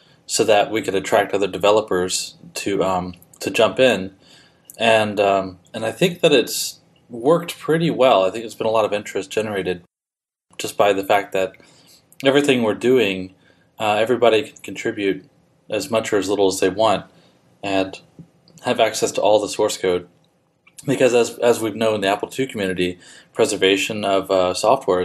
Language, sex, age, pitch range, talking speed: English, male, 30-49, 95-115 Hz, 175 wpm